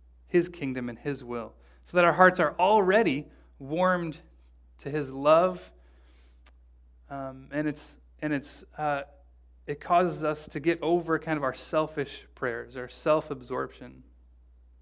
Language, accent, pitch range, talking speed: English, American, 130-185 Hz, 140 wpm